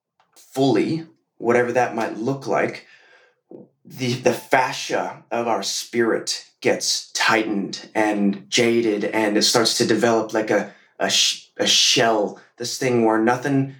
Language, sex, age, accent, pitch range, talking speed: English, male, 20-39, American, 110-125 Hz, 130 wpm